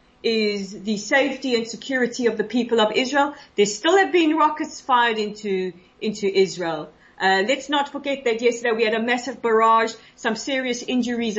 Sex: female